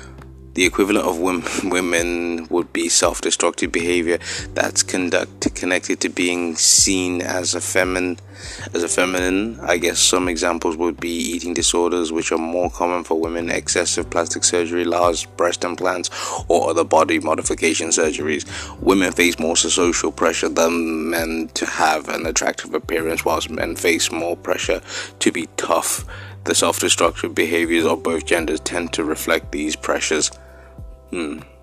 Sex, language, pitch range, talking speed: male, English, 80-90 Hz, 145 wpm